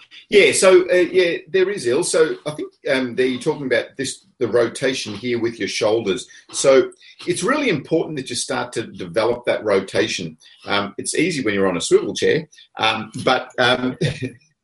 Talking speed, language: 180 wpm, English